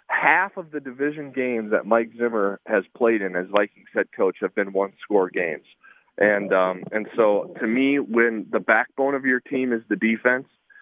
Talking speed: 195 wpm